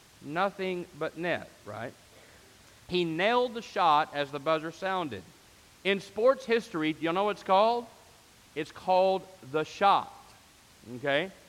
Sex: male